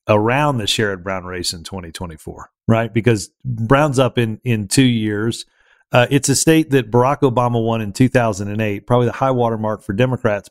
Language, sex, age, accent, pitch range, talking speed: English, male, 40-59, American, 110-135 Hz, 185 wpm